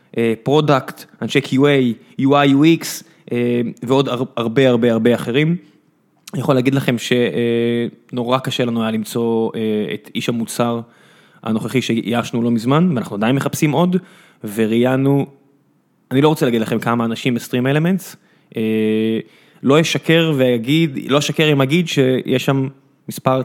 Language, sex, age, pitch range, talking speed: Hebrew, male, 20-39, 125-165 Hz, 120 wpm